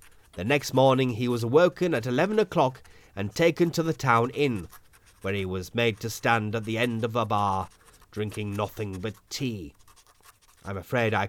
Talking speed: 180 wpm